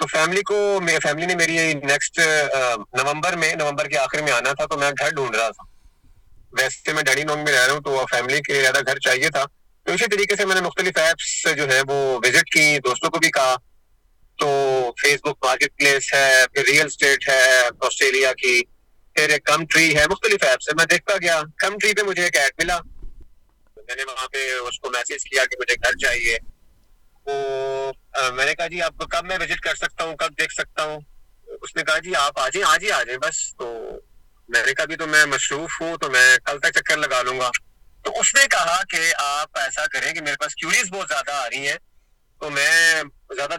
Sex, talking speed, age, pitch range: male, 165 wpm, 30-49, 135-175 Hz